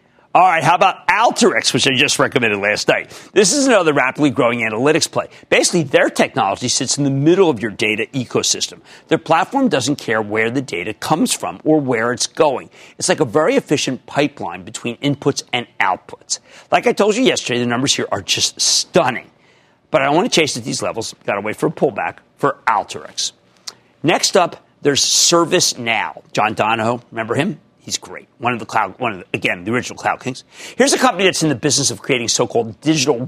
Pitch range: 120-165 Hz